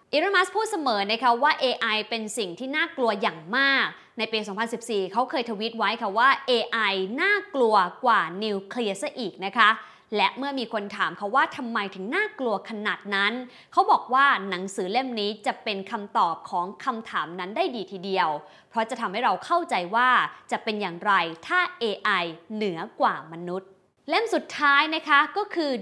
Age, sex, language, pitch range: 20-39, female, English, 205-275 Hz